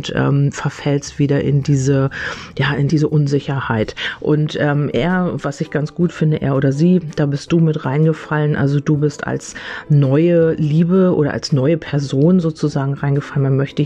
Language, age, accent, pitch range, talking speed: German, 40-59, German, 140-155 Hz, 170 wpm